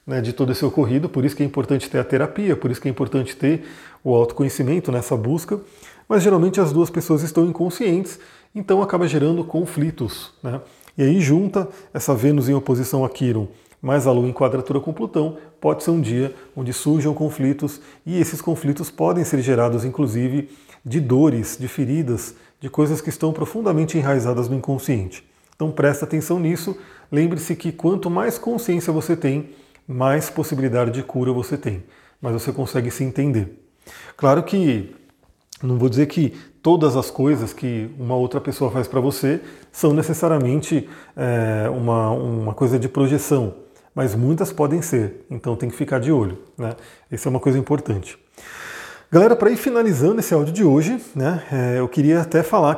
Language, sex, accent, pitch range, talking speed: Portuguese, male, Brazilian, 130-160 Hz, 175 wpm